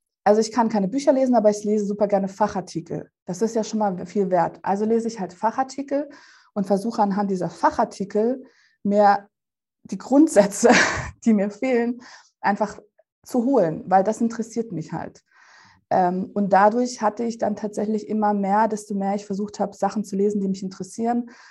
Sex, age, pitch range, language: female, 20-39, 190-230 Hz, German